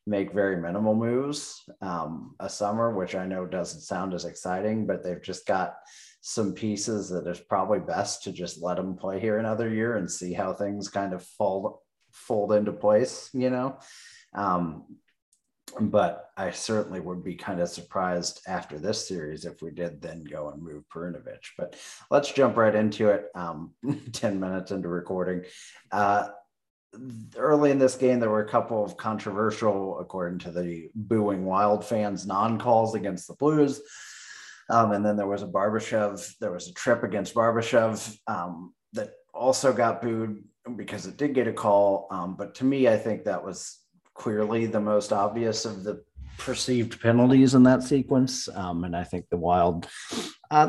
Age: 30-49